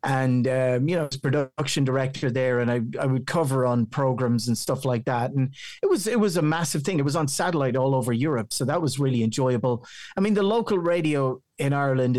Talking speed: 225 wpm